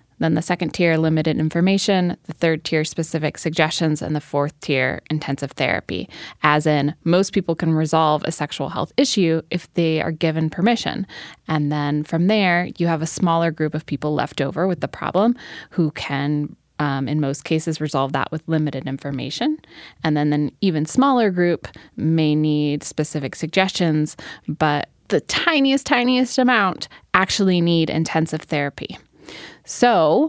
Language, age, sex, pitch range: English, 20-39, female, 150-180 Hz